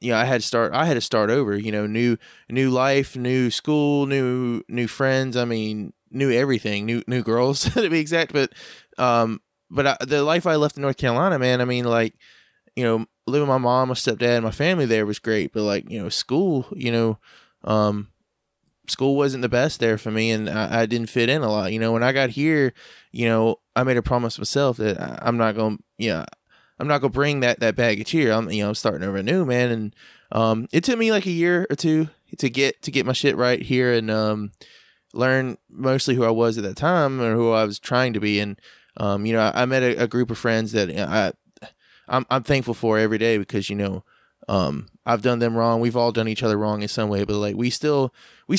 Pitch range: 110-135 Hz